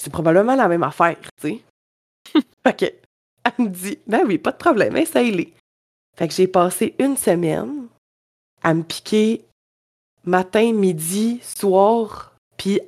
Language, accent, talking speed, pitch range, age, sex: French, Canadian, 155 wpm, 160-215 Hz, 20-39, female